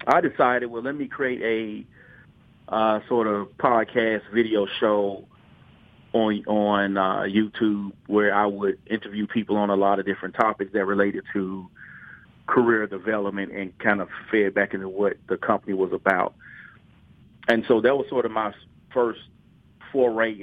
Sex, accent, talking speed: male, American, 155 wpm